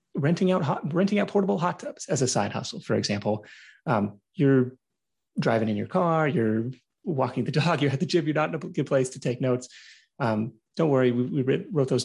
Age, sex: 30-49, male